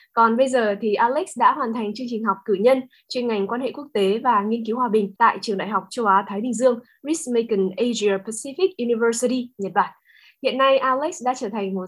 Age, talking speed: 10-29, 225 wpm